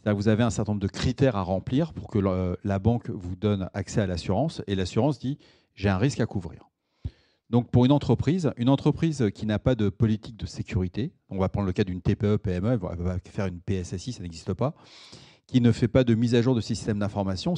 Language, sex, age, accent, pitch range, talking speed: French, male, 40-59, French, 105-130 Hz, 230 wpm